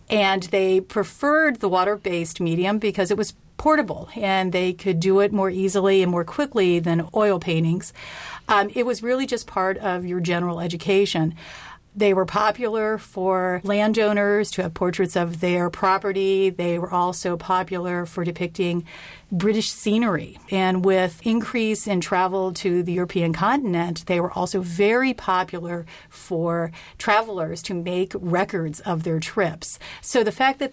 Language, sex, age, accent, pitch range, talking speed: English, female, 40-59, American, 175-210 Hz, 150 wpm